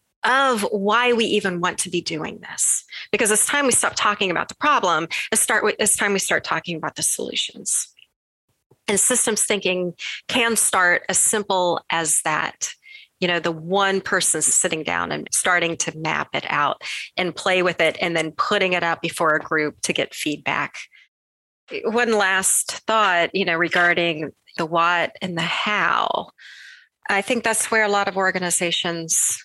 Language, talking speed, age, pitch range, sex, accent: English, 170 wpm, 30-49, 165-205 Hz, female, American